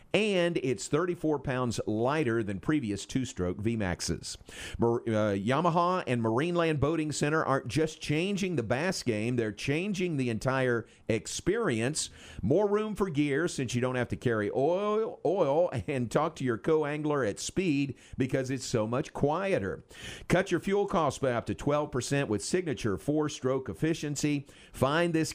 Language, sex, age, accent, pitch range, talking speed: English, male, 50-69, American, 115-165 Hz, 155 wpm